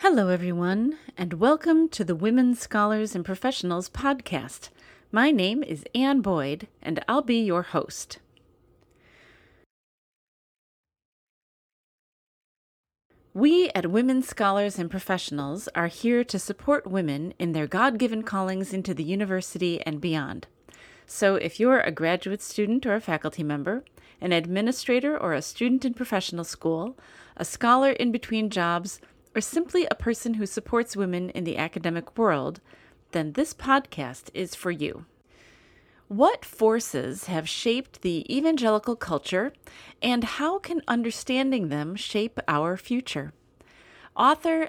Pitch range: 170-245 Hz